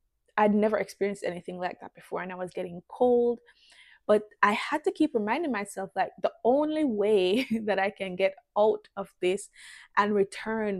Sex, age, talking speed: female, 20-39, 180 wpm